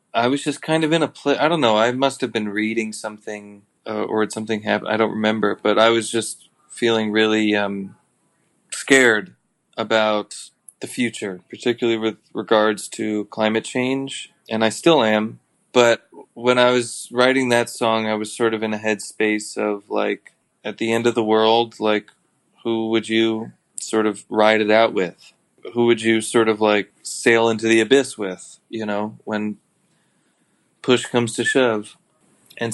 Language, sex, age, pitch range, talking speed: English, male, 20-39, 105-120 Hz, 180 wpm